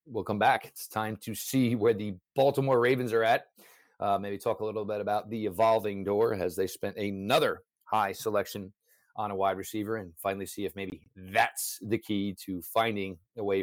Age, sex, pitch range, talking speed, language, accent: 40-59, male, 105-155 Hz, 200 wpm, English, American